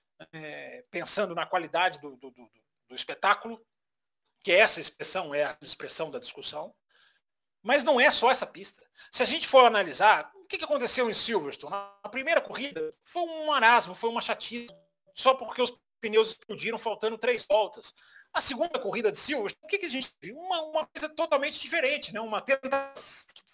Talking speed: 175 wpm